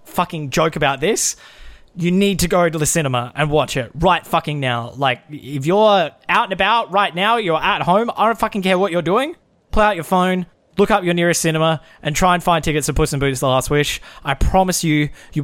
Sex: male